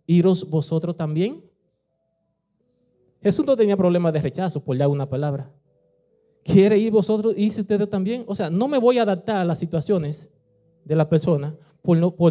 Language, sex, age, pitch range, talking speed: Spanish, male, 30-49, 150-185 Hz, 170 wpm